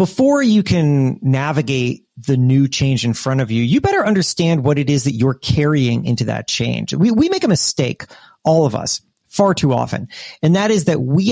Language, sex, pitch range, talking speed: English, male, 135-190 Hz, 205 wpm